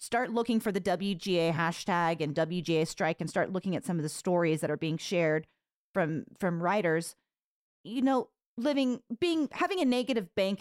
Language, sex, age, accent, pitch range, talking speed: English, female, 30-49, American, 175-235 Hz, 180 wpm